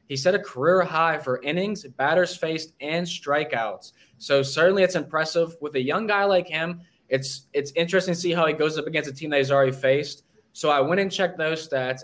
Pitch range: 130-170 Hz